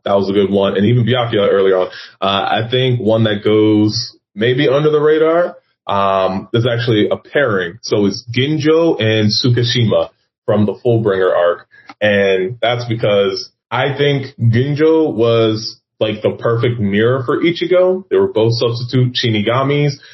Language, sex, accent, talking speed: English, male, American, 155 wpm